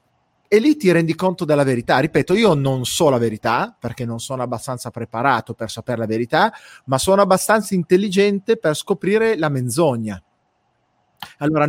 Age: 30-49